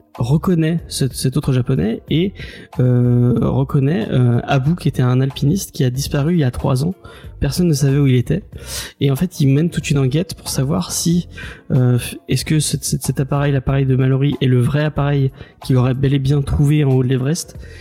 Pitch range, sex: 125-145 Hz, male